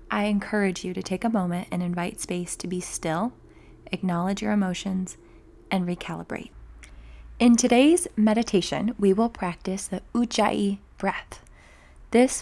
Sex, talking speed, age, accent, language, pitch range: female, 135 wpm, 20-39, American, English, 180-205 Hz